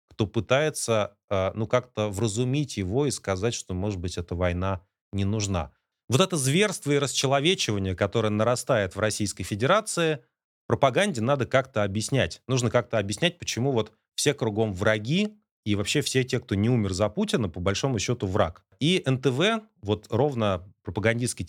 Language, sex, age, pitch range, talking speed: Russian, male, 30-49, 95-130 Hz, 155 wpm